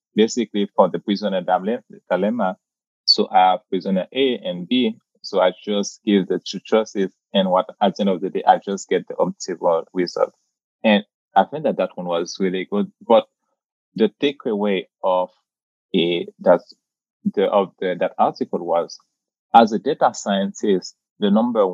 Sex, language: male, English